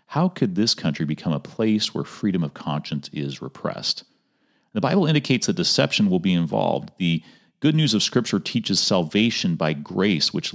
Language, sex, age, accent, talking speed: English, male, 40-59, American, 175 wpm